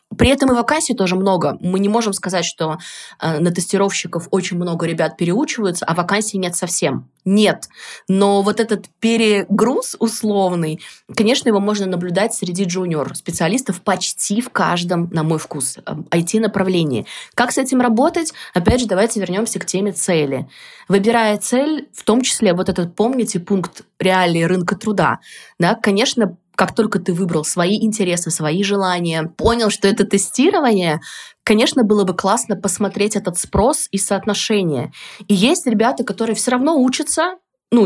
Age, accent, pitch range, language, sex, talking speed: 20-39, native, 180-225 Hz, Russian, female, 150 wpm